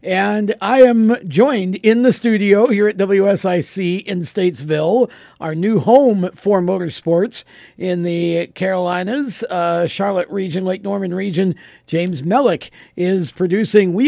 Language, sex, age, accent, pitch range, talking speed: English, male, 50-69, American, 175-220 Hz, 130 wpm